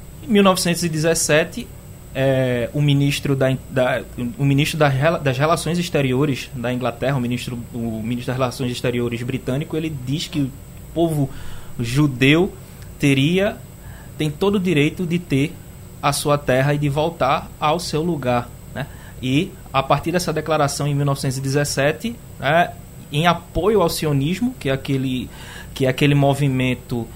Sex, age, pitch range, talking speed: male, 20-39, 130-155 Hz, 125 wpm